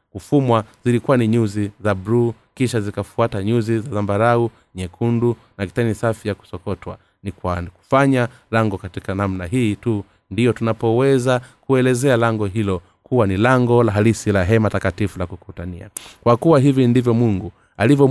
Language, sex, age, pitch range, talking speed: Swahili, male, 30-49, 95-120 Hz, 150 wpm